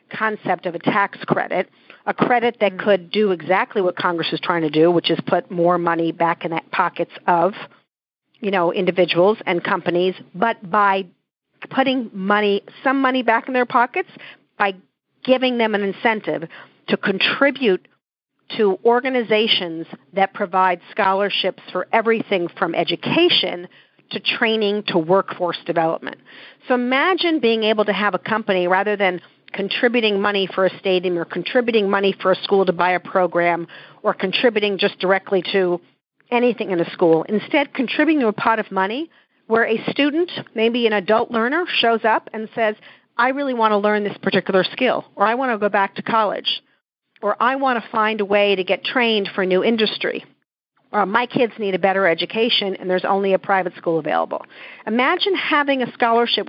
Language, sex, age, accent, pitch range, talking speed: English, female, 50-69, American, 185-235 Hz, 175 wpm